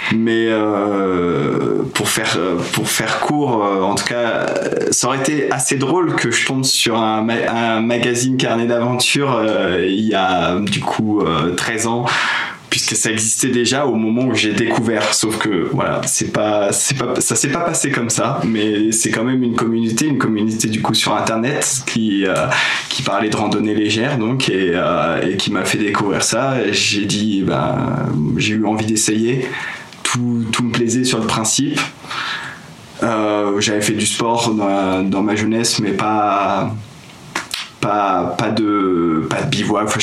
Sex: male